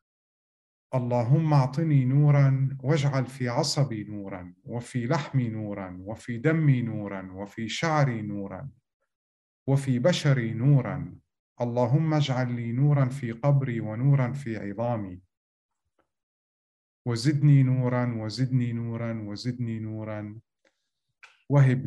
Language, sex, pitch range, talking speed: English, male, 110-140 Hz, 95 wpm